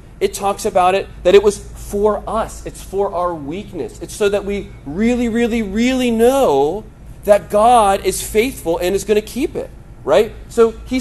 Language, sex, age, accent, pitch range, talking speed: English, male, 40-59, American, 135-210 Hz, 185 wpm